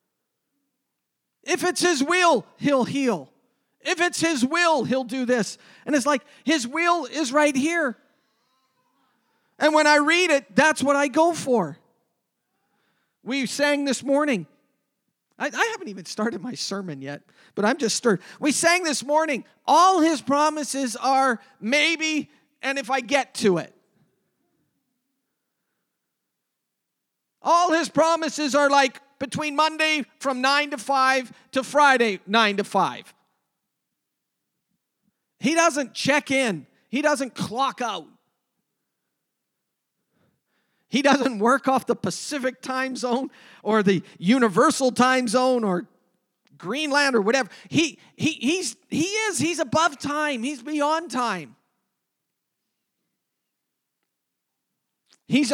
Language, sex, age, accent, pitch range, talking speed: English, male, 40-59, American, 240-300 Hz, 125 wpm